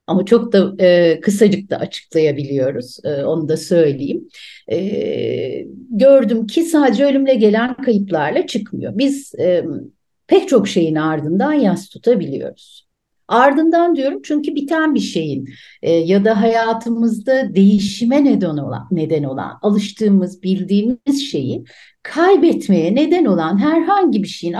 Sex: female